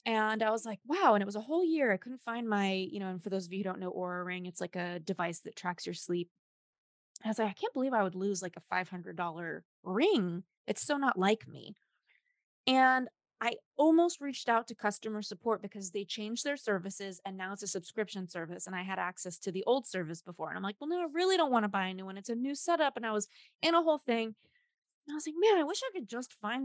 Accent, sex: American, female